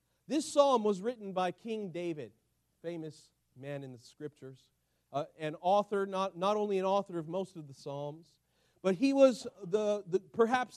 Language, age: English, 40-59